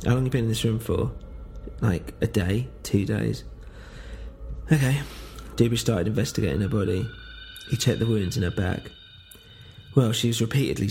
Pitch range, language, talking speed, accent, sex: 95-115 Hz, English, 170 wpm, British, male